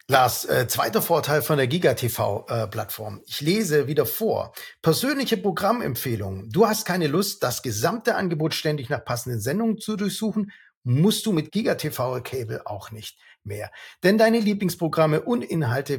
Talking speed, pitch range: 160 wpm, 120-165 Hz